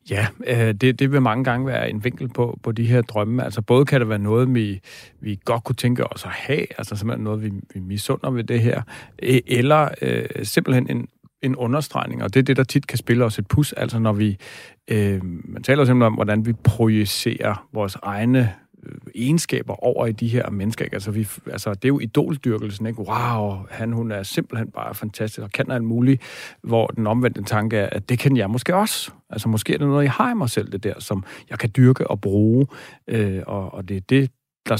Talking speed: 220 wpm